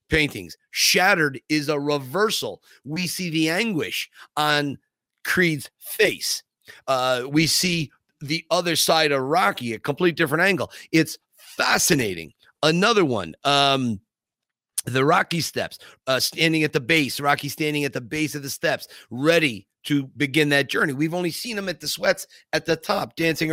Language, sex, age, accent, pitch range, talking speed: English, male, 40-59, American, 140-170 Hz, 155 wpm